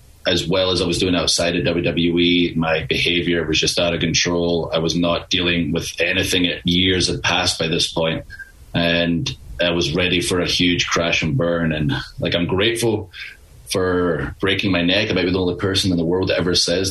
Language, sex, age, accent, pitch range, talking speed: English, male, 30-49, Canadian, 85-90 Hz, 205 wpm